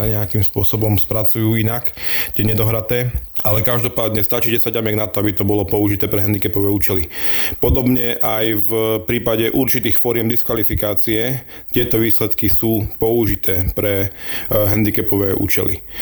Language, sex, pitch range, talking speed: Slovak, male, 105-115 Hz, 130 wpm